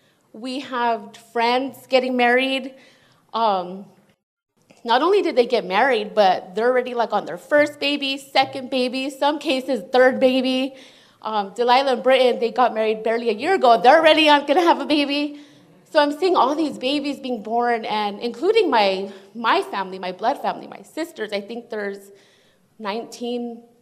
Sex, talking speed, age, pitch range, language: female, 165 wpm, 20-39, 220-265 Hz, English